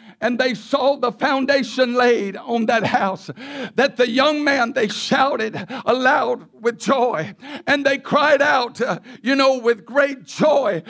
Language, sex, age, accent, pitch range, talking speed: English, male, 60-79, American, 260-320 Hz, 155 wpm